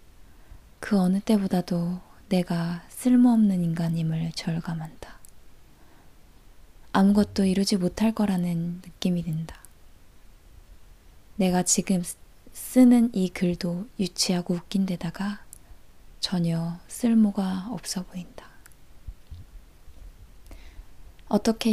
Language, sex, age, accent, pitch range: Korean, female, 20-39, native, 165-200 Hz